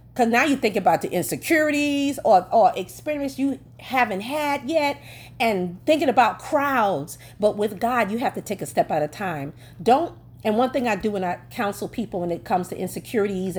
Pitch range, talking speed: 180-280 Hz, 200 wpm